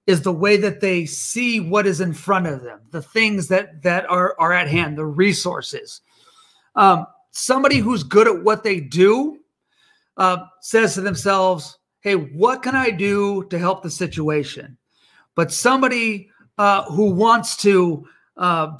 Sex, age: male, 40-59